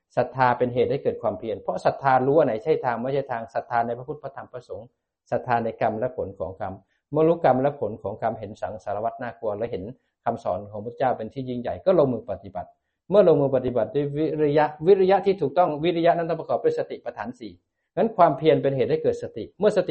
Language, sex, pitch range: Thai, male, 125-165 Hz